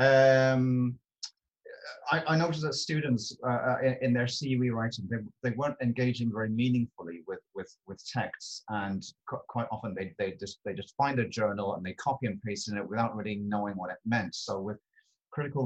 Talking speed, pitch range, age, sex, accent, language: 190 wpm, 105-125 Hz, 30-49, male, British, English